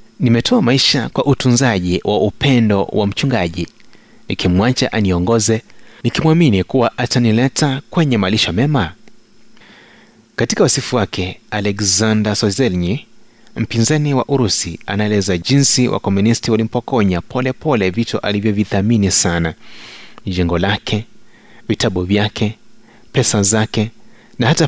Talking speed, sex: 100 wpm, male